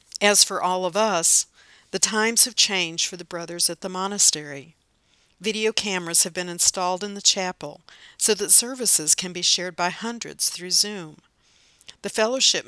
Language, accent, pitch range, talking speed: English, American, 170-205 Hz, 165 wpm